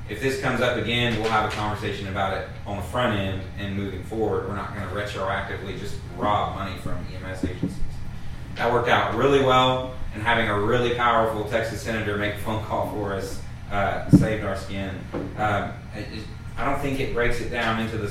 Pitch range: 100-115 Hz